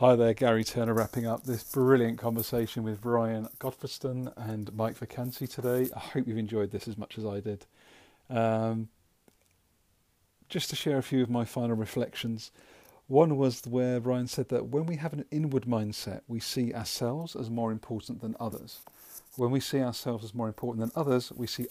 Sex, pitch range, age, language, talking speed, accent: male, 110-125 Hz, 40-59, English, 185 wpm, British